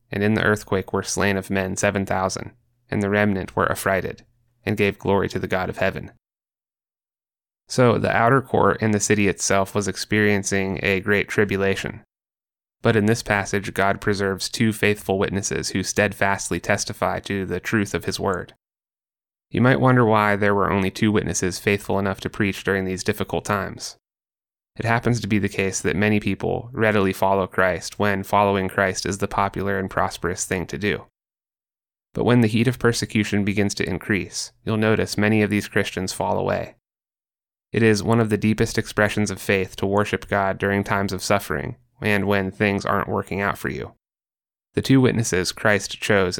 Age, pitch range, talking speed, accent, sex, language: 20-39, 95-105 Hz, 180 wpm, American, male, English